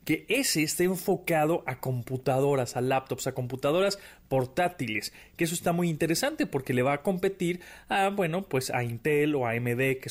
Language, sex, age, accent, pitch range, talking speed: Spanish, male, 30-49, Mexican, 125-165 Hz, 180 wpm